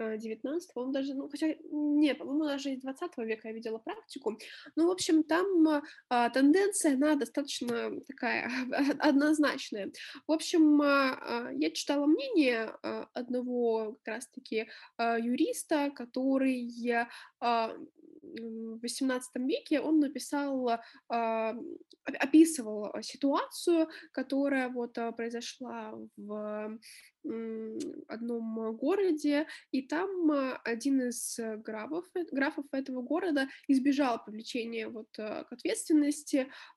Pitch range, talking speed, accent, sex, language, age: 230-300 Hz, 95 wpm, native, female, Russian, 20-39